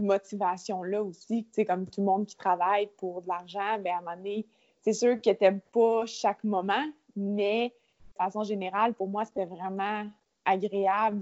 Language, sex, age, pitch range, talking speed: French, female, 20-39, 190-230 Hz, 180 wpm